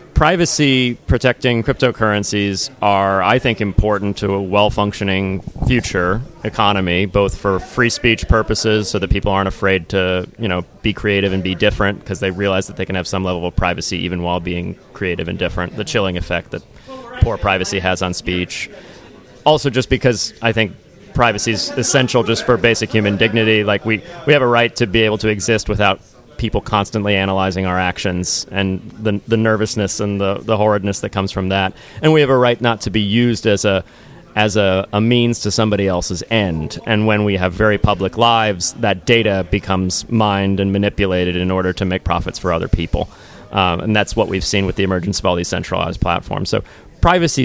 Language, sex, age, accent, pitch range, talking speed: English, male, 30-49, American, 95-115 Hz, 195 wpm